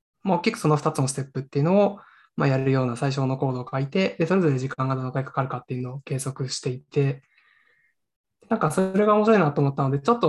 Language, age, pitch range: Japanese, 20-39, 130-155 Hz